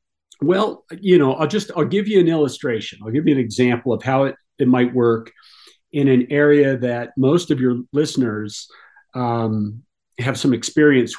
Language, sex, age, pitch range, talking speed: English, male, 50-69, 120-145 Hz, 175 wpm